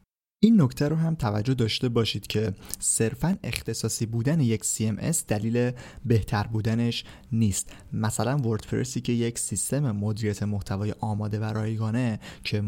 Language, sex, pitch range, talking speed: Persian, male, 105-120 Hz, 135 wpm